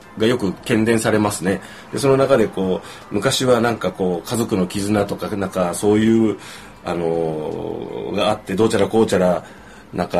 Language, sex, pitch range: Japanese, male, 90-125 Hz